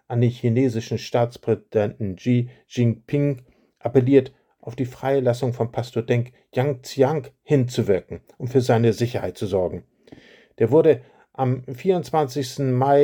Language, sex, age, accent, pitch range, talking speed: German, male, 50-69, German, 120-145 Hz, 120 wpm